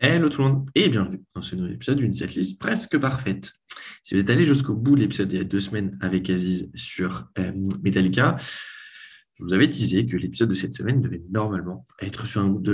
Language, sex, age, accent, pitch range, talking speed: French, male, 20-39, French, 95-120 Hz, 230 wpm